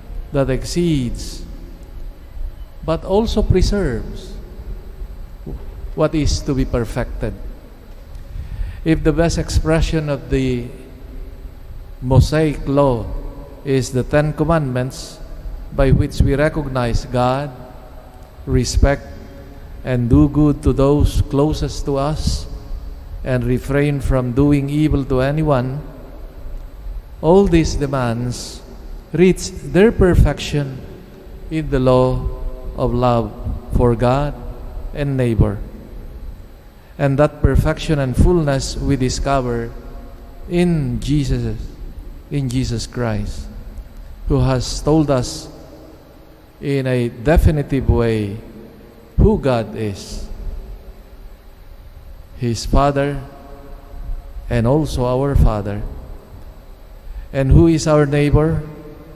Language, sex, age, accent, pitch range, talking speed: English, male, 50-69, Filipino, 95-145 Hz, 95 wpm